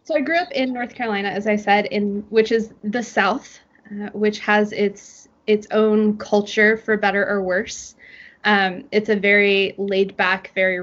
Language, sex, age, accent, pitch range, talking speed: French, female, 20-39, American, 190-225 Hz, 185 wpm